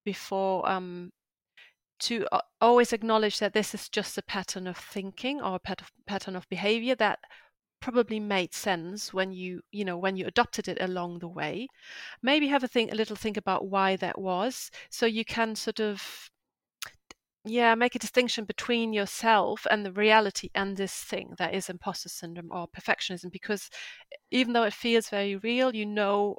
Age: 30-49